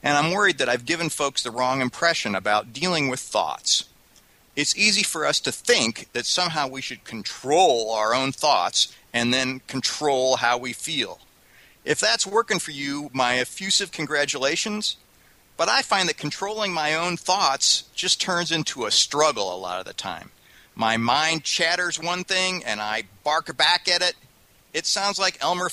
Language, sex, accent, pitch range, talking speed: English, male, American, 130-185 Hz, 175 wpm